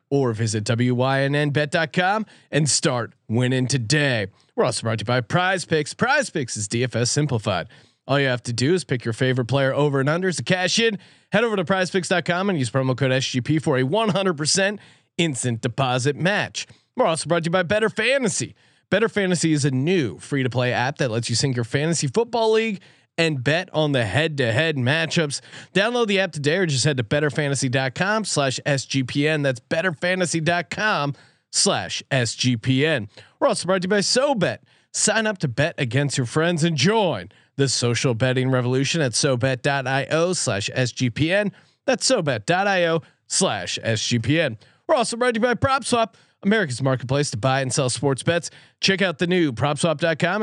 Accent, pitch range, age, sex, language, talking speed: American, 130-180 Hz, 30-49, male, English, 175 wpm